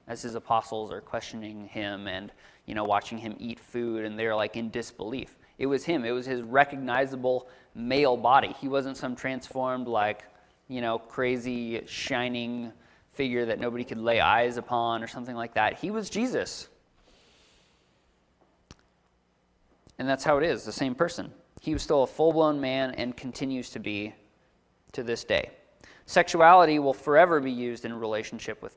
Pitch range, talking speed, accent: 105-130 Hz, 165 wpm, American